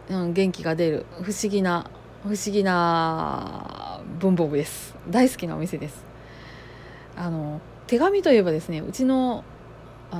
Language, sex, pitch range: Japanese, female, 165-240 Hz